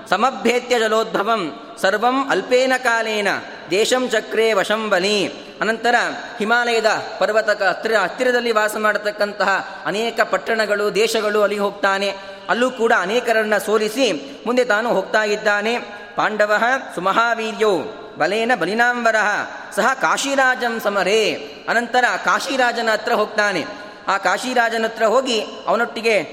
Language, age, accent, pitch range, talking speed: Kannada, 30-49, native, 210-235 Hz, 100 wpm